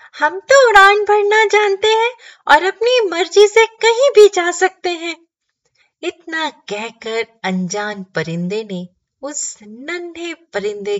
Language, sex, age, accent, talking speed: Hindi, female, 30-49, native, 125 wpm